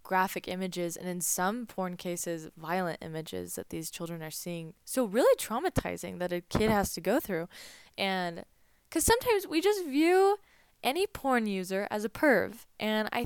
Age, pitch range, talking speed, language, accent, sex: 10-29, 175-225 Hz, 170 wpm, English, American, female